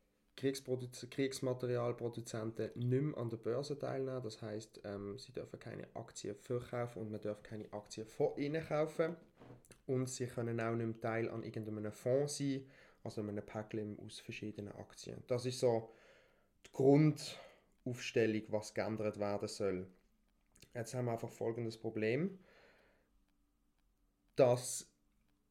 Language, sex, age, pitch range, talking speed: German, male, 20-39, 110-135 Hz, 130 wpm